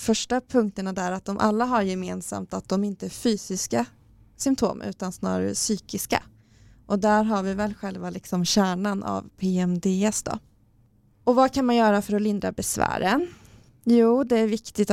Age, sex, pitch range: 20-39, female, 185-210 Hz